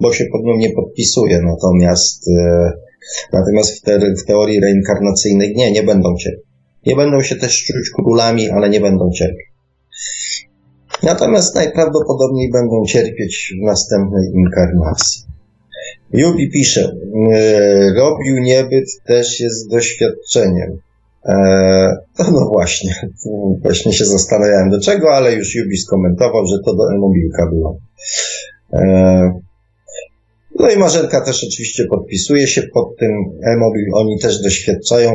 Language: Polish